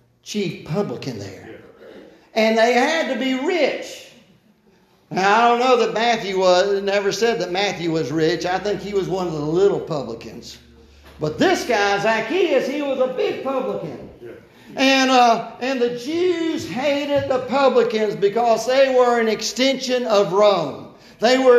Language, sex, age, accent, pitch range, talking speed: English, male, 50-69, American, 180-255 Hz, 160 wpm